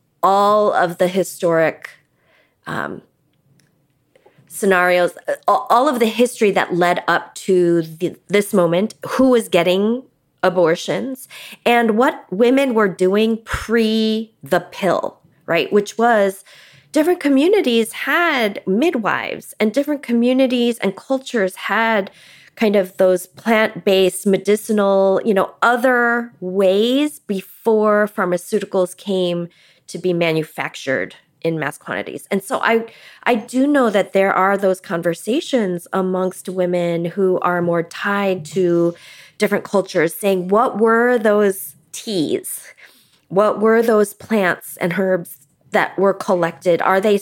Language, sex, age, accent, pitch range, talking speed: English, female, 30-49, American, 175-225 Hz, 120 wpm